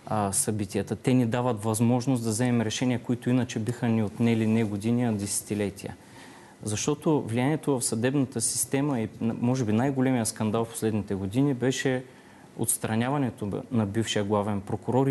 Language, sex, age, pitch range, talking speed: Bulgarian, male, 30-49, 110-130 Hz, 145 wpm